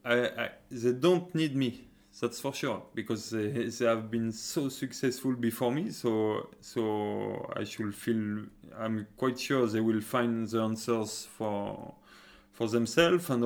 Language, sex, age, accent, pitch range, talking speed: Swedish, male, 20-39, French, 105-125 Hz, 155 wpm